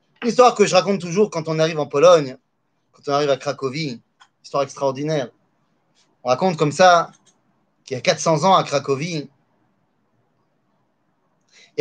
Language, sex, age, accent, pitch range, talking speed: French, male, 30-49, French, 150-220 Hz, 145 wpm